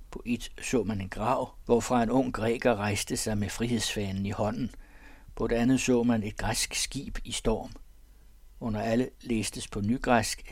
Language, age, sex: Danish, 60-79, male